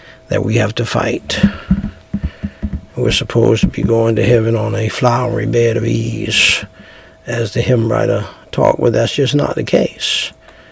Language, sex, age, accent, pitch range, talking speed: English, male, 60-79, American, 110-130 Hz, 170 wpm